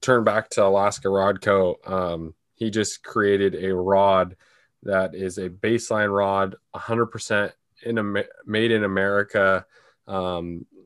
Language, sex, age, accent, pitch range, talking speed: English, male, 20-39, American, 90-100 Hz, 135 wpm